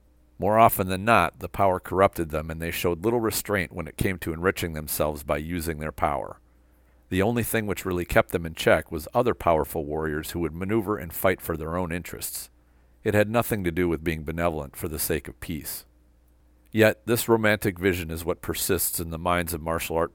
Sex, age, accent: male, 50-69, American